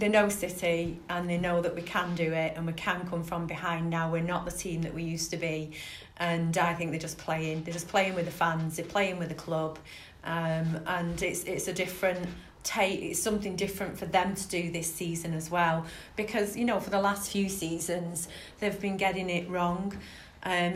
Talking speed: 220 wpm